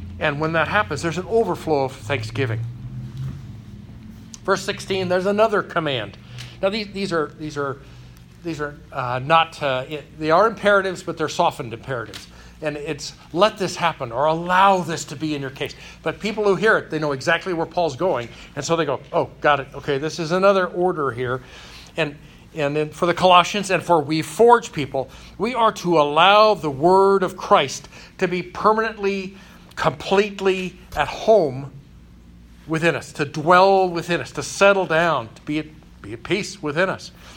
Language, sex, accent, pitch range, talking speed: English, male, American, 130-185 Hz, 180 wpm